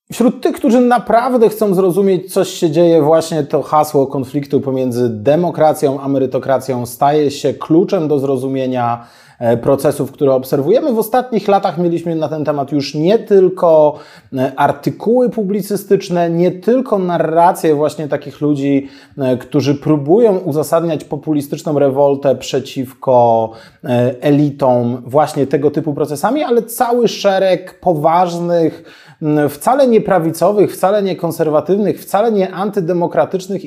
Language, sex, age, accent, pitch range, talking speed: Polish, male, 30-49, native, 140-180 Hz, 115 wpm